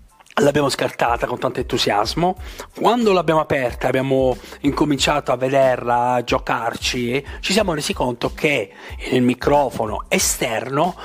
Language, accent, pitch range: Italian, native, 125-195 Hz